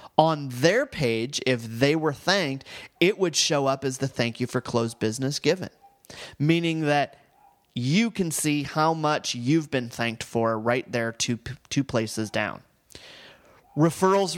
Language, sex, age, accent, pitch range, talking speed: English, male, 30-49, American, 125-175 Hz, 155 wpm